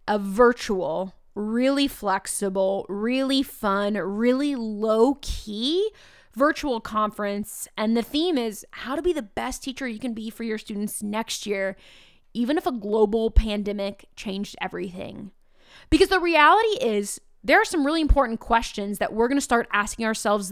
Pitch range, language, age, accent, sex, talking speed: 210-265 Hz, English, 20-39, American, female, 150 wpm